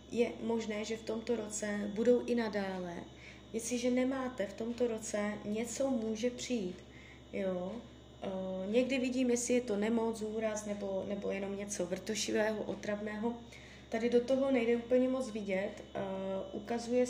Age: 20-39